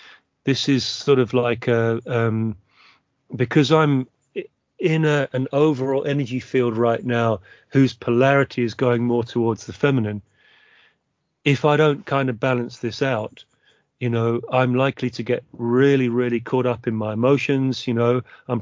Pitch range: 115-135 Hz